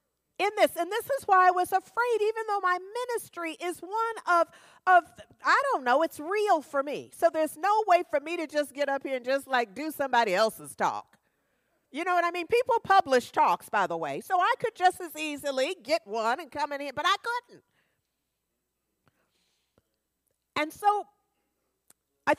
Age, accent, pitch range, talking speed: 50-69, American, 275-365 Hz, 190 wpm